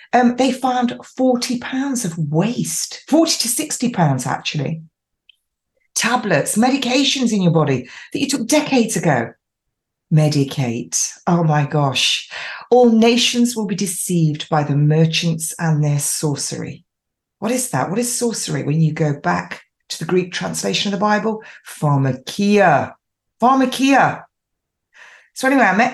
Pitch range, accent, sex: 155-245 Hz, British, female